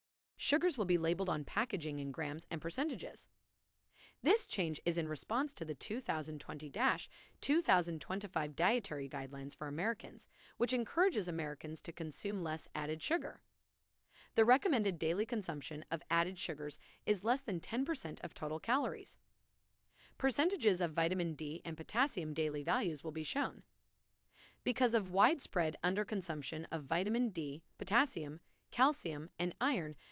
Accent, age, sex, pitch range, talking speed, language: American, 30-49, female, 155-235 Hz, 135 wpm, English